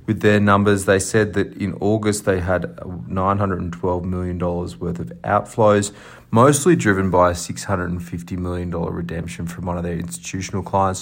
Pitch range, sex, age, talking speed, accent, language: 90-100 Hz, male, 30-49, 150 wpm, Australian, English